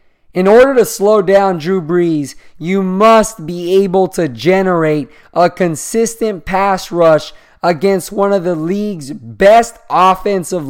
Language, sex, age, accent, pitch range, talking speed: English, male, 20-39, American, 175-205 Hz, 135 wpm